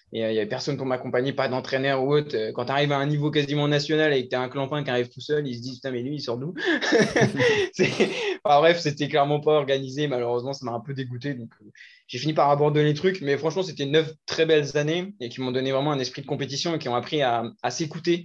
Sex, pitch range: male, 125-155 Hz